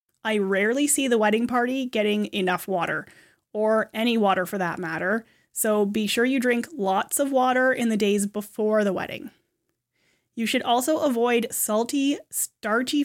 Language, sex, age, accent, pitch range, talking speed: English, female, 20-39, American, 200-245 Hz, 160 wpm